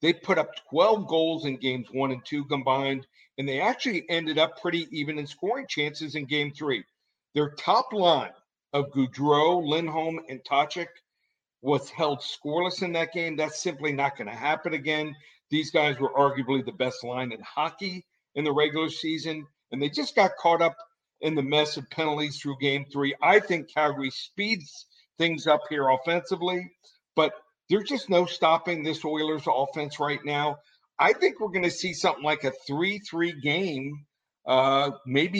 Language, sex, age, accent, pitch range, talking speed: English, male, 50-69, American, 140-170 Hz, 175 wpm